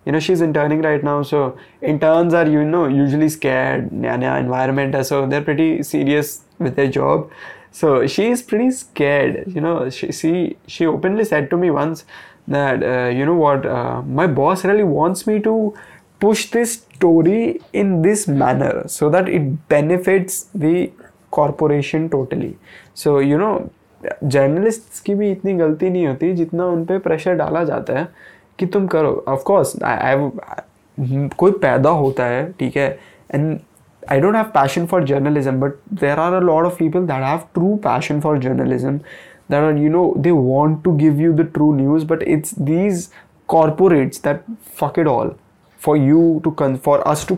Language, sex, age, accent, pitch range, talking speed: English, male, 20-39, Indian, 145-180 Hz, 155 wpm